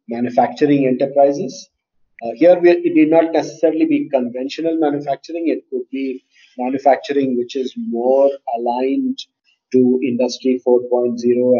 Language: English